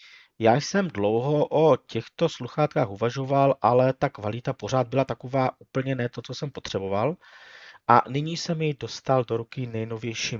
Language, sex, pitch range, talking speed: Czech, male, 100-130 Hz, 155 wpm